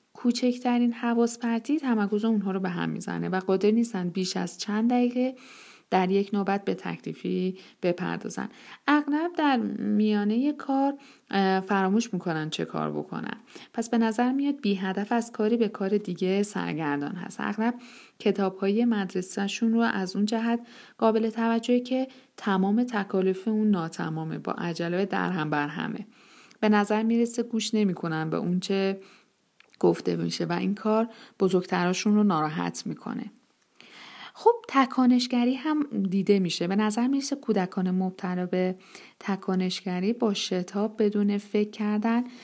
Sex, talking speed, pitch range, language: female, 140 wpm, 190-235 Hz, Persian